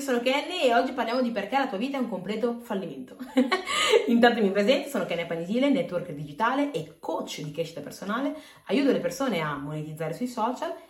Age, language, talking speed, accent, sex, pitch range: 30-49, Italian, 185 wpm, native, female, 160-235 Hz